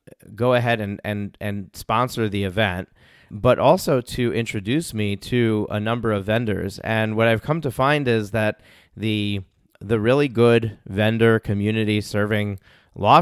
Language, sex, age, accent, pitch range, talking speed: English, male, 30-49, American, 100-115 Hz, 155 wpm